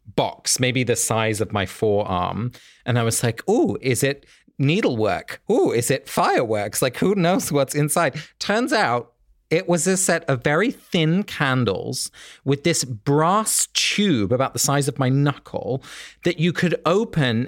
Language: English